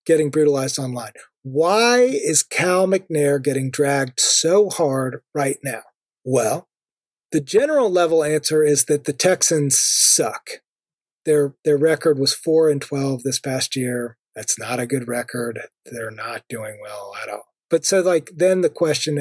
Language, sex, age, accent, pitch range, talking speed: English, male, 40-59, American, 145-205 Hz, 155 wpm